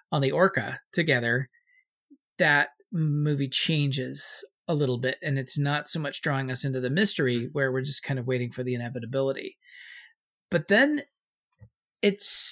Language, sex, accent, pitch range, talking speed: English, male, American, 140-190 Hz, 155 wpm